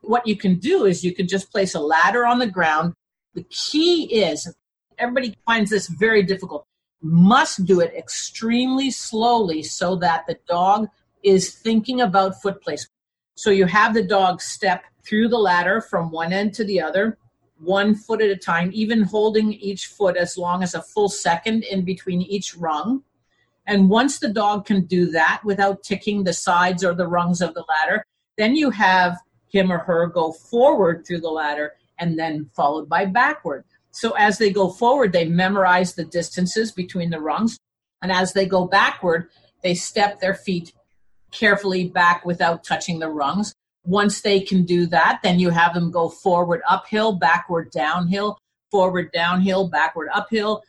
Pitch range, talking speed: 175-210 Hz, 175 wpm